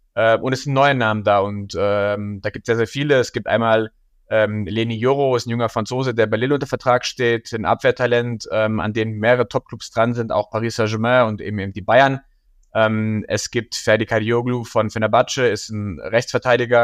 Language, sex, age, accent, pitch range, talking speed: German, male, 20-39, German, 110-125 Hz, 205 wpm